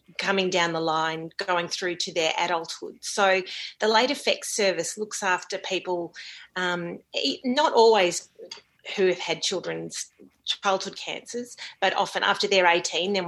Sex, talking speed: female, 145 wpm